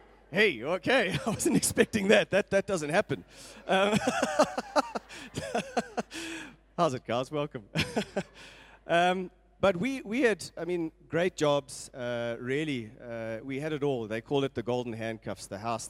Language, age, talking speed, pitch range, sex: English, 30-49, 145 wpm, 115-160 Hz, male